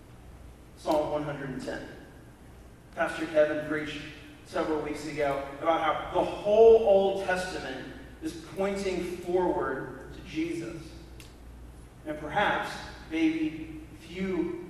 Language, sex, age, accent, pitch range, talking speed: English, male, 40-59, American, 145-180 Hz, 95 wpm